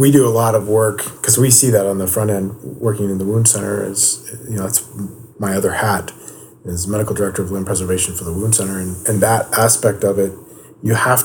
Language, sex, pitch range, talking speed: English, male, 100-125 Hz, 235 wpm